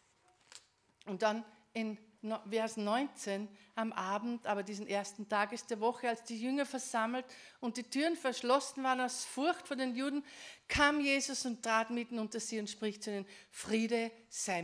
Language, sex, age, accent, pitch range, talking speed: German, female, 50-69, Austrian, 245-320 Hz, 165 wpm